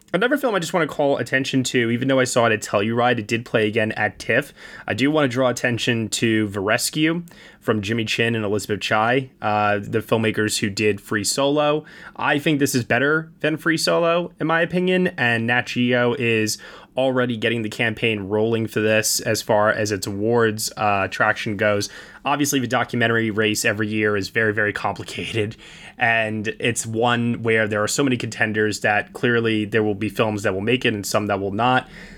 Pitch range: 110-130 Hz